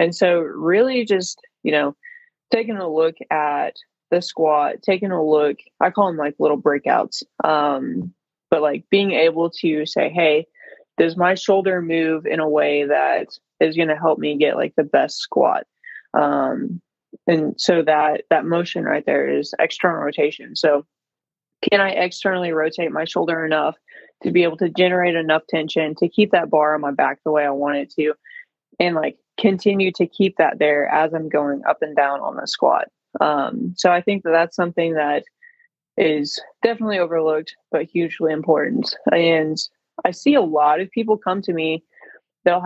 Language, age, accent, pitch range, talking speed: English, 20-39, American, 155-195 Hz, 180 wpm